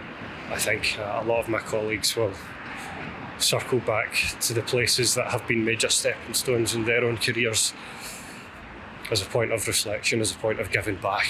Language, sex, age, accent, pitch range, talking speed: English, male, 20-39, British, 110-120 Hz, 180 wpm